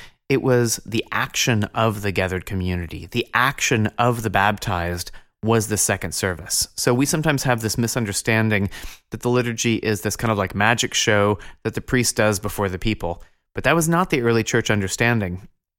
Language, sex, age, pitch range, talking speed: English, male, 30-49, 95-120 Hz, 180 wpm